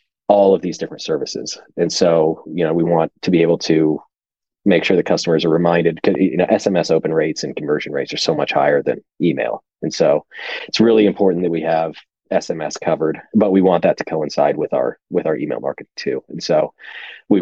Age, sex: 30-49, male